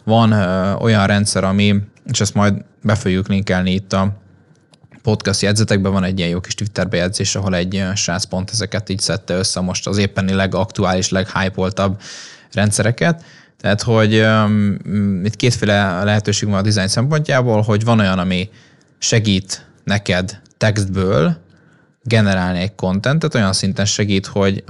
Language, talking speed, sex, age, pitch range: Hungarian, 140 wpm, male, 20-39, 95-110 Hz